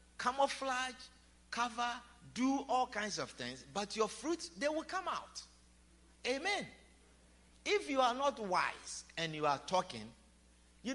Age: 50-69